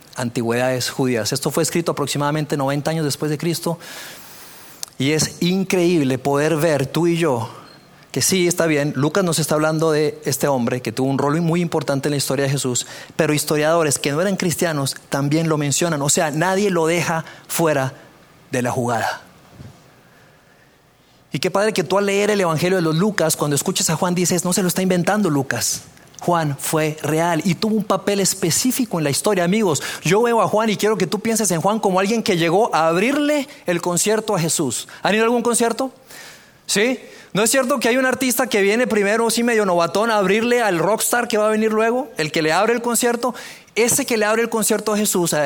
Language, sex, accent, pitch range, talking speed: Spanish, male, Mexican, 150-205 Hz, 210 wpm